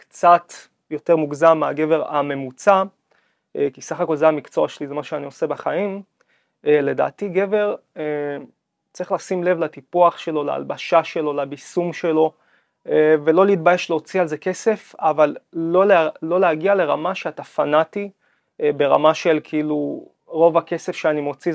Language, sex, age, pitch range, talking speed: Hebrew, male, 30-49, 155-190 Hz, 135 wpm